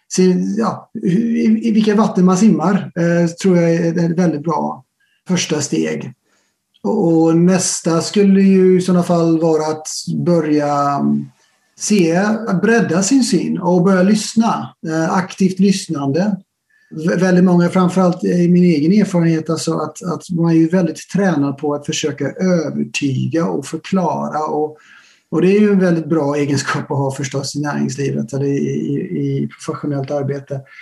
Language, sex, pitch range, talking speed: Swedish, male, 150-185 Hz, 155 wpm